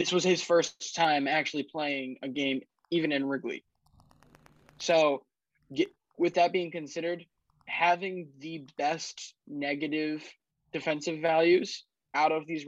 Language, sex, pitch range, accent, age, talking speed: English, male, 145-170 Hz, American, 20-39, 130 wpm